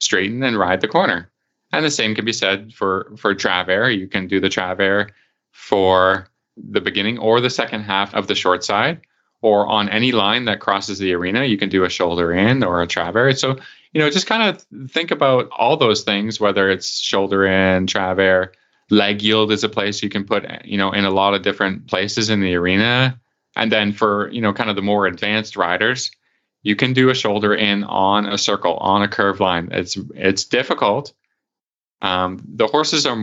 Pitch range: 95-120 Hz